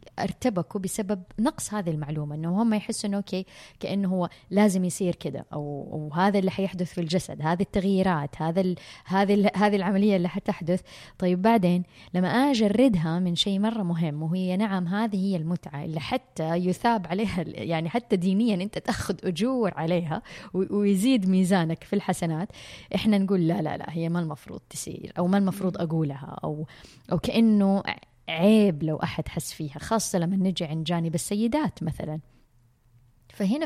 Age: 20-39